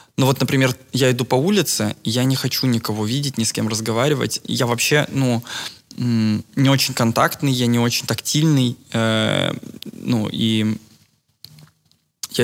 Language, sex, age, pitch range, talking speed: Russian, male, 20-39, 110-125 Hz, 140 wpm